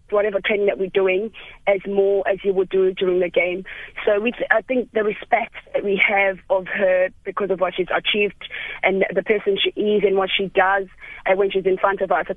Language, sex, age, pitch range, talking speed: English, female, 20-39, 185-200 Hz, 225 wpm